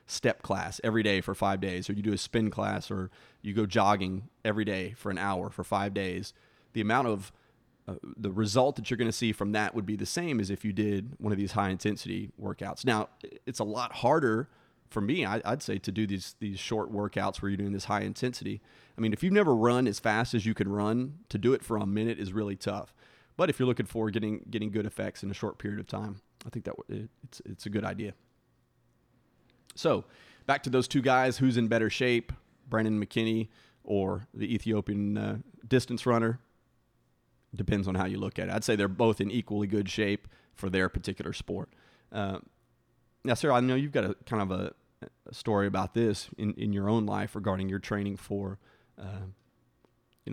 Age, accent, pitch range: 30-49, American, 100-115 Hz